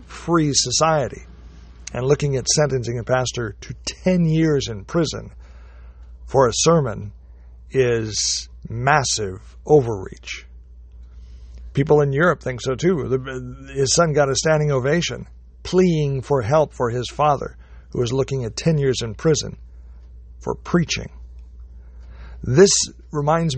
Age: 60-79